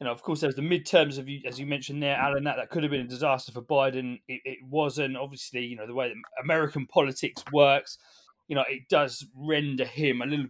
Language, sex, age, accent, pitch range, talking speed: English, male, 20-39, British, 130-155 Hz, 240 wpm